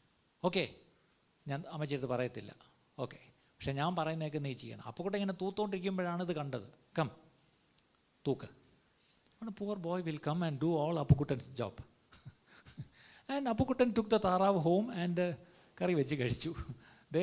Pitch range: 140-220 Hz